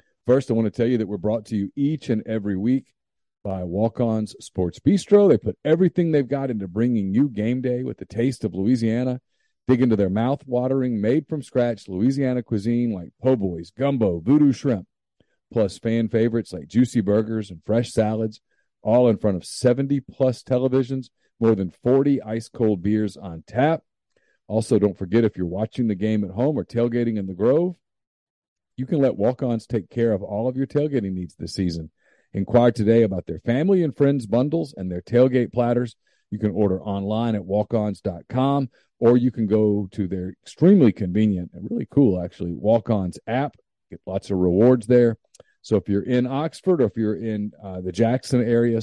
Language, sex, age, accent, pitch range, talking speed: English, male, 40-59, American, 100-125 Hz, 180 wpm